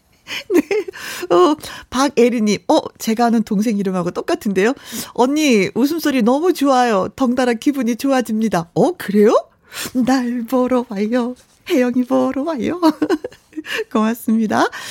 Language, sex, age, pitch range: Korean, female, 40-59, 180-270 Hz